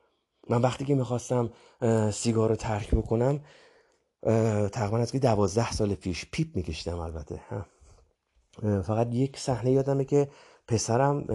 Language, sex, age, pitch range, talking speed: Persian, male, 30-49, 110-135 Hz, 120 wpm